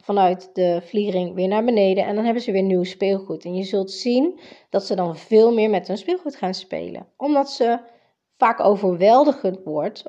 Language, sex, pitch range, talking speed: Dutch, female, 190-260 Hz, 190 wpm